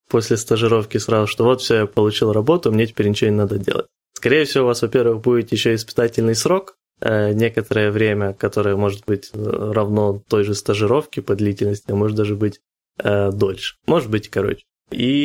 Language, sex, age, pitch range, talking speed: Ukrainian, male, 20-39, 105-120 Hz, 175 wpm